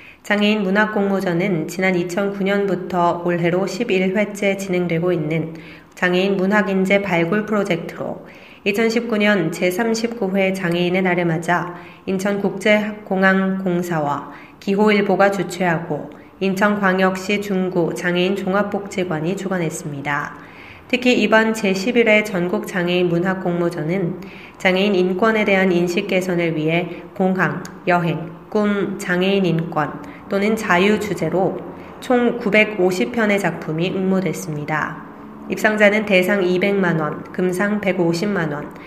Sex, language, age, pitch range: female, Korean, 20-39, 175-205 Hz